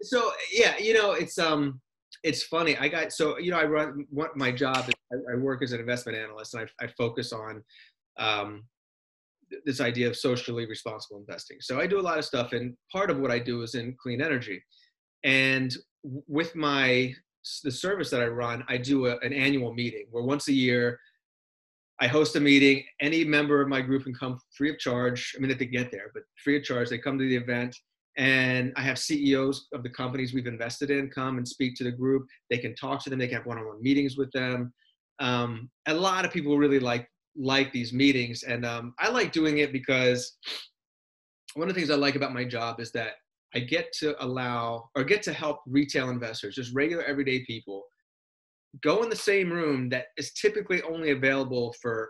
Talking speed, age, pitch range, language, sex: 210 wpm, 30-49, 120-145 Hz, English, male